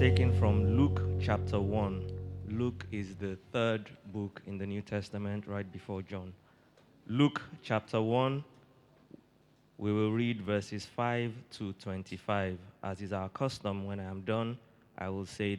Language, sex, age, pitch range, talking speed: English, male, 20-39, 95-115 Hz, 145 wpm